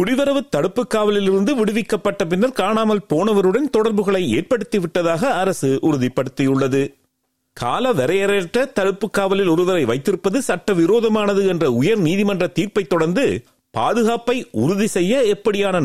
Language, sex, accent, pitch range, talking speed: Tamil, male, native, 165-225 Hz, 100 wpm